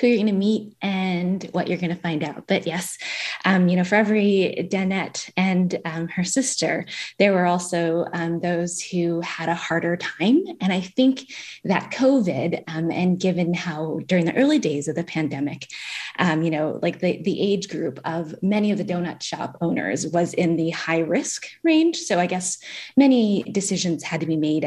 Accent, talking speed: American, 195 wpm